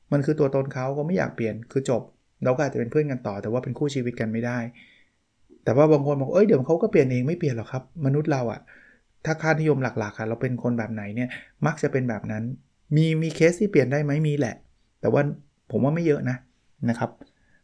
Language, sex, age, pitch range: Thai, male, 20-39, 120-145 Hz